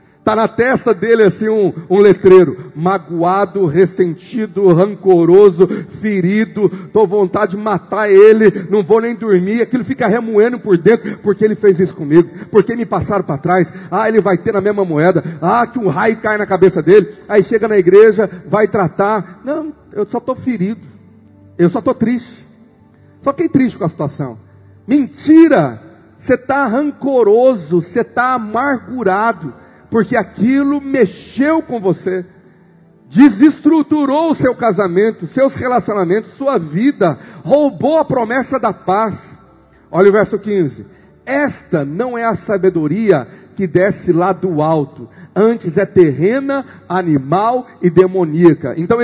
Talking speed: 145 wpm